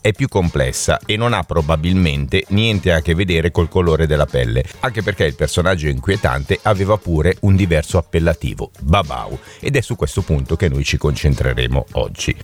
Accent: native